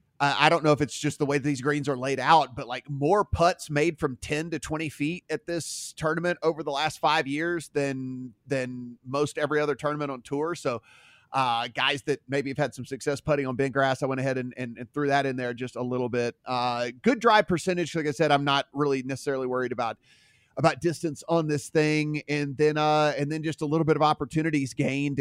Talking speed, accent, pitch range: 230 wpm, American, 135-155 Hz